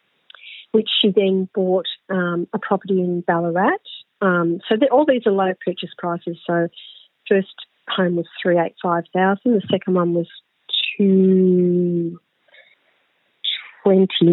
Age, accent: 40-59, Australian